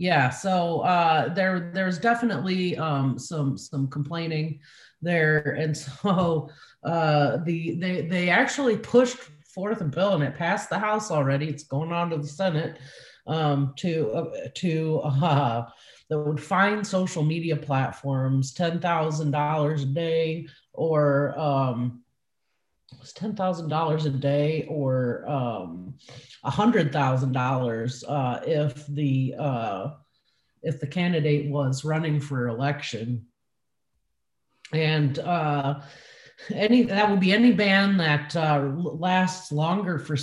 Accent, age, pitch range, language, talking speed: American, 30-49, 140-170 Hz, English, 120 wpm